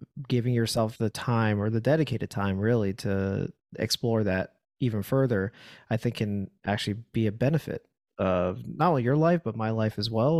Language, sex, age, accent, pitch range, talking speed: English, male, 30-49, American, 110-125 Hz, 180 wpm